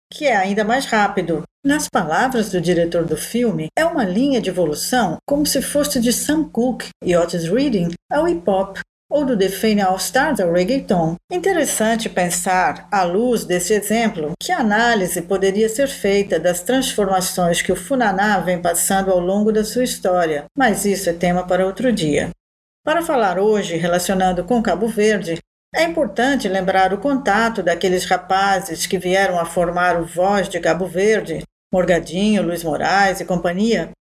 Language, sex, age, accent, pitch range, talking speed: Portuguese, female, 50-69, Brazilian, 180-245 Hz, 165 wpm